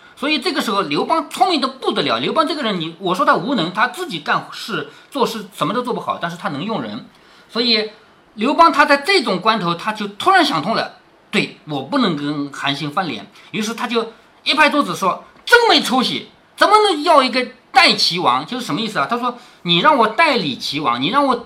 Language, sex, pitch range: Chinese, male, 210-320 Hz